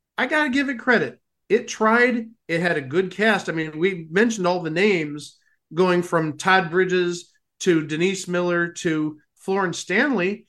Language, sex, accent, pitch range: English, male, American, 155-205 Hz